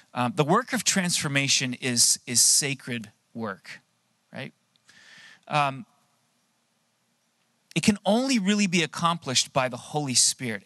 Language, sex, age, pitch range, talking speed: English, male, 30-49, 125-165 Hz, 120 wpm